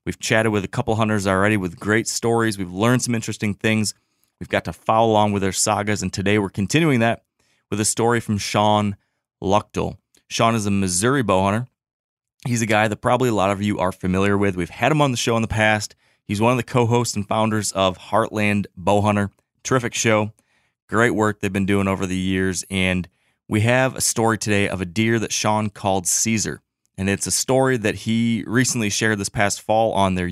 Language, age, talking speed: English, 30-49, 210 wpm